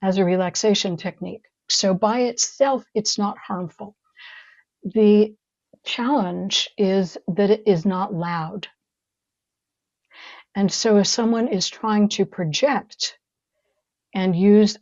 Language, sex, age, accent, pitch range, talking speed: English, female, 60-79, American, 180-215 Hz, 115 wpm